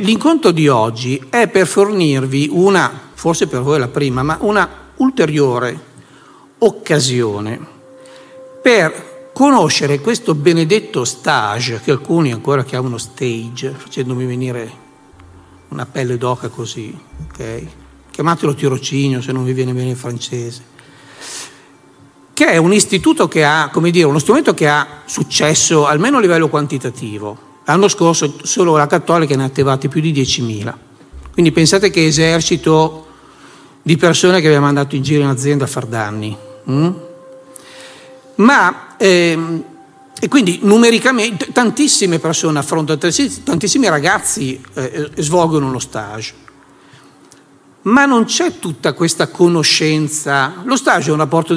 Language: Italian